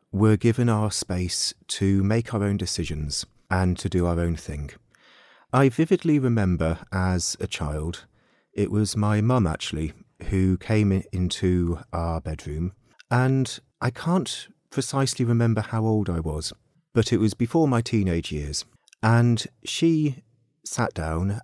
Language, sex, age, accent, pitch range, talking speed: English, male, 30-49, British, 90-115 Hz, 145 wpm